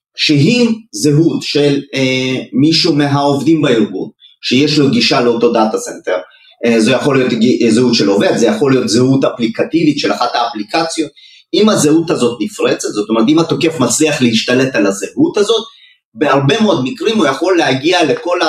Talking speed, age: 160 wpm, 30-49